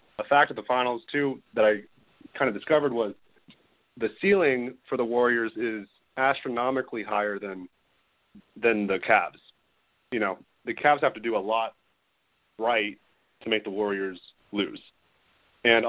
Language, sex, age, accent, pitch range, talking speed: English, male, 30-49, American, 105-125 Hz, 150 wpm